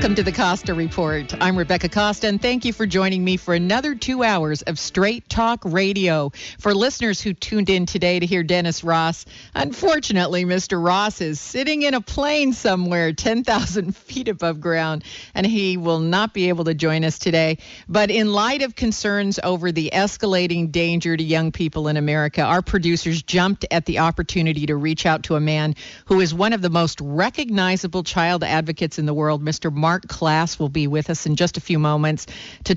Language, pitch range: English, 155-195 Hz